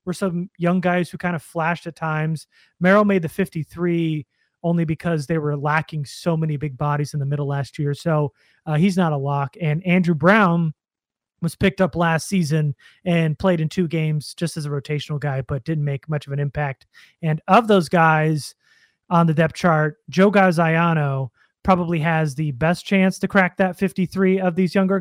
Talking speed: 195 wpm